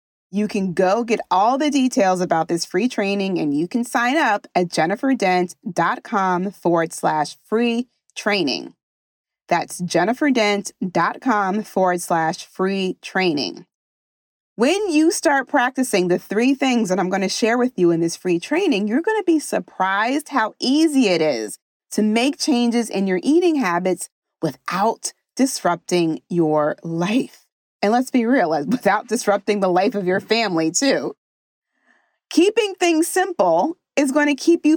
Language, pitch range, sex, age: English, 180-265 Hz, female, 30-49